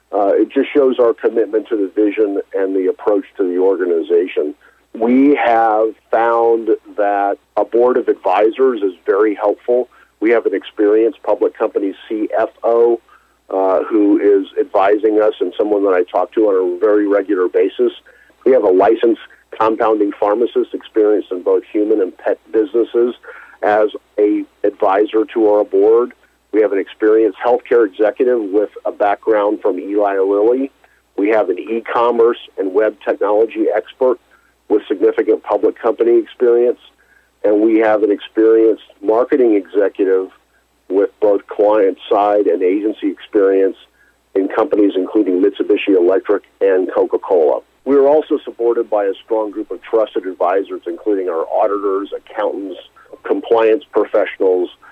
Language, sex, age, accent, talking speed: English, male, 50-69, American, 140 wpm